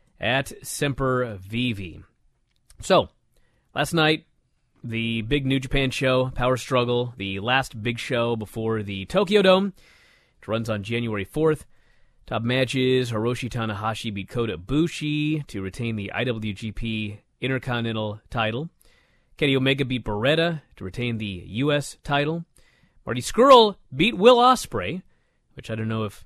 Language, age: English, 30-49